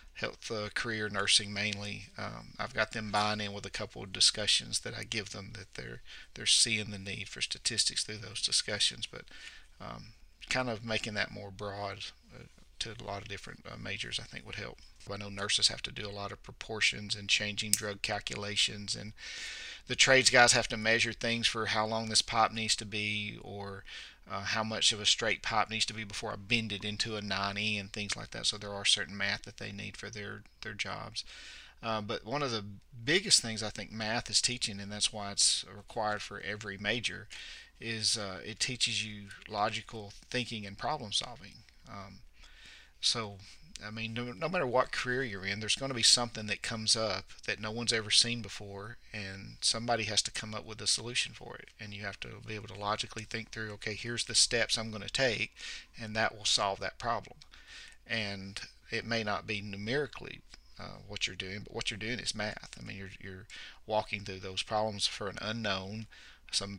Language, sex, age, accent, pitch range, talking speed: English, male, 40-59, American, 100-115 Hz, 210 wpm